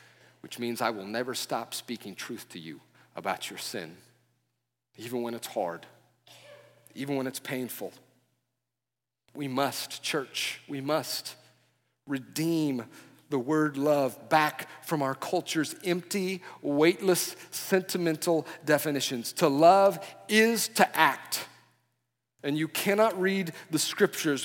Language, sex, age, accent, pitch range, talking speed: English, male, 40-59, American, 125-165 Hz, 120 wpm